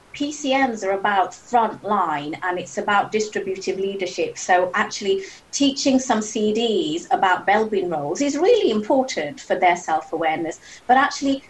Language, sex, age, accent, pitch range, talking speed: English, female, 30-49, British, 175-220 Hz, 130 wpm